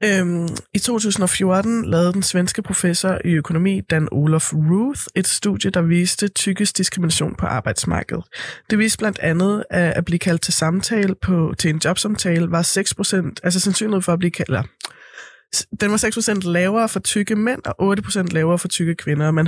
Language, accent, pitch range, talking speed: Danish, native, 165-205 Hz, 165 wpm